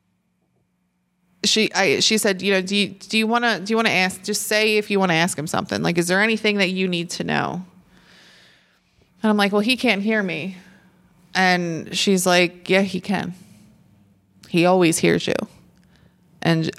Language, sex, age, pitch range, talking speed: English, female, 20-39, 175-210 Hz, 185 wpm